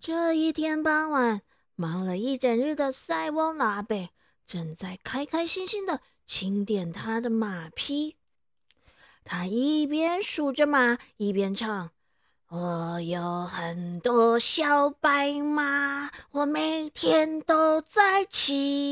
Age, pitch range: 20-39, 225-325 Hz